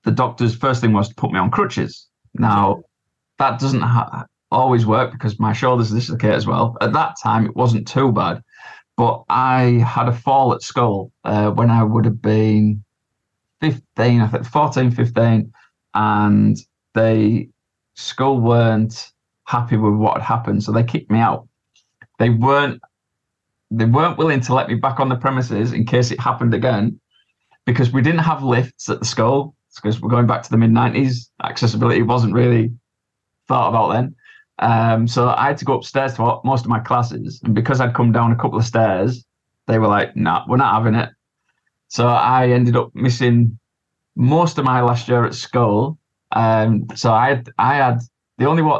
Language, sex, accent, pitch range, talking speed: English, male, British, 110-130 Hz, 185 wpm